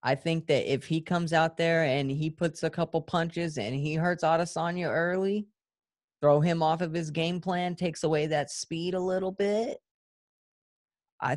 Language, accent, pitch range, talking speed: English, American, 140-165 Hz, 180 wpm